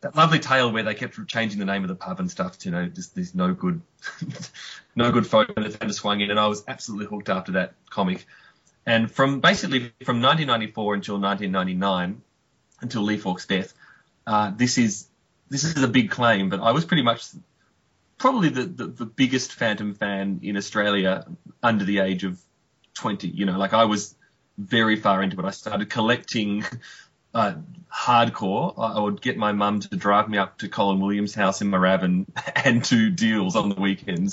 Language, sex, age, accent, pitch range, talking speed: English, male, 30-49, Australian, 100-135 Hz, 190 wpm